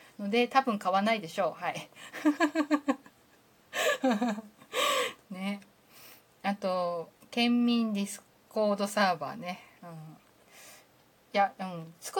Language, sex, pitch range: Japanese, female, 180-245 Hz